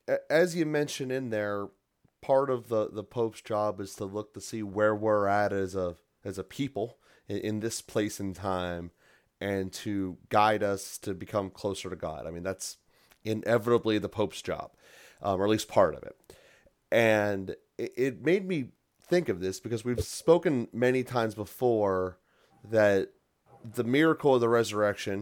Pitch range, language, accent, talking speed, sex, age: 100-115 Hz, English, American, 170 wpm, male, 30-49